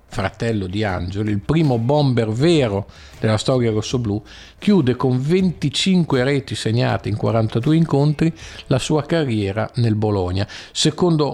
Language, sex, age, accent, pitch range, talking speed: Italian, male, 50-69, native, 110-145 Hz, 125 wpm